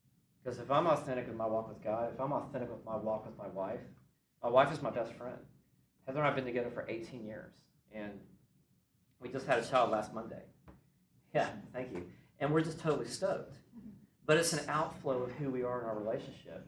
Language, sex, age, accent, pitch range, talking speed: English, male, 40-59, American, 110-140 Hz, 215 wpm